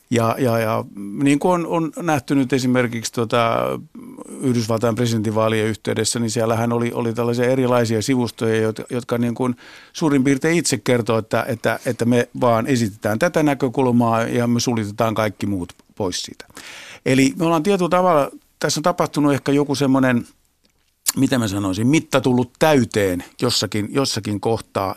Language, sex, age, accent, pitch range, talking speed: Finnish, male, 50-69, native, 115-140 Hz, 155 wpm